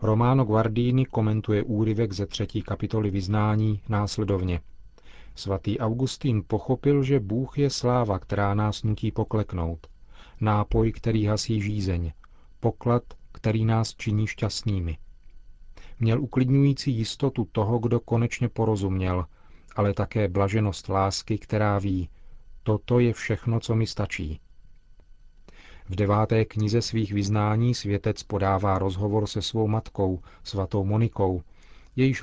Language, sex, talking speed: Czech, male, 115 wpm